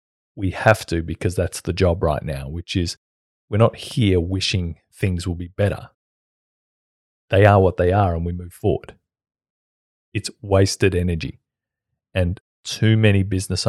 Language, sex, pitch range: English, male, 90-110 Hz